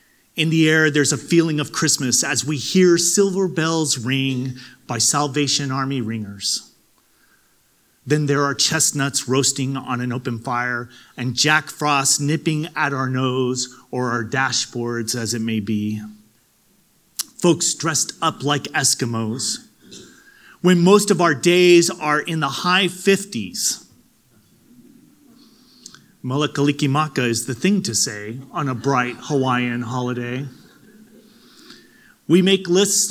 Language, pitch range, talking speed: English, 125-170 Hz, 125 wpm